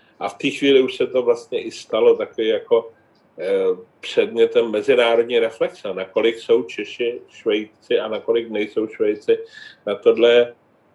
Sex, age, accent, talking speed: male, 40-59, native, 140 wpm